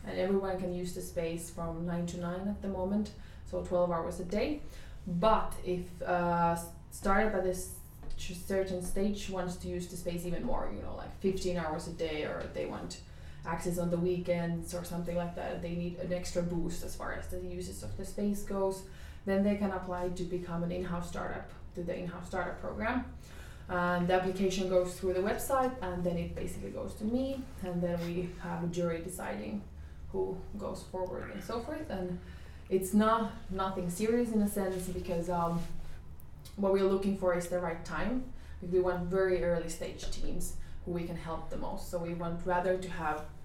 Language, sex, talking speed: English, female, 195 wpm